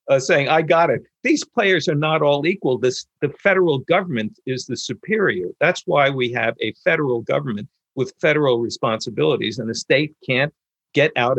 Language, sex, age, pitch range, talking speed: English, male, 50-69, 115-160 Hz, 180 wpm